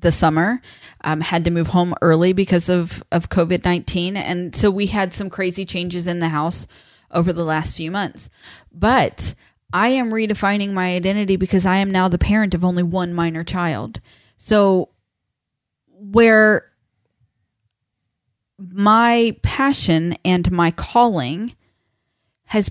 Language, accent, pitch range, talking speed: English, American, 160-200 Hz, 135 wpm